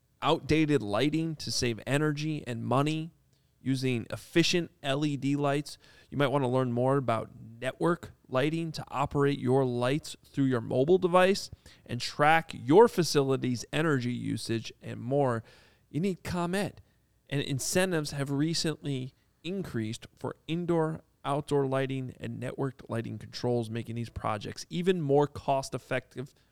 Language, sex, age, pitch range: English, male, 30-49, 125-155 Hz